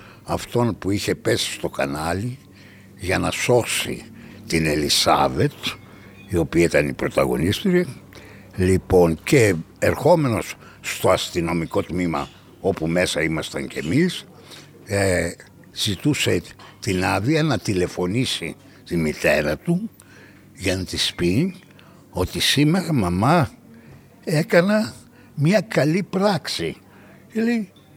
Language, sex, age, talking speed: Greek, male, 60-79, 100 wpm